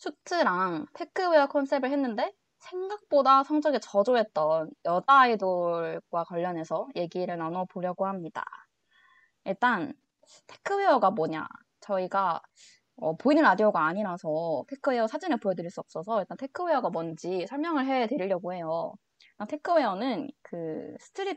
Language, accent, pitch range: Korean, native, 180-275 Hz